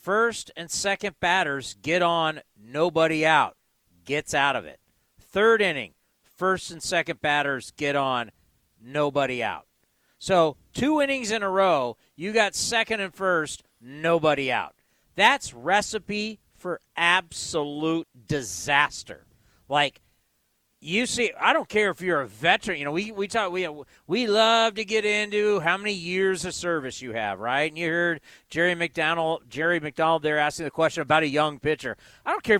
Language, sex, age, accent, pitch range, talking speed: English, male, 40-59, American, 155-210 Hz, 160 wpm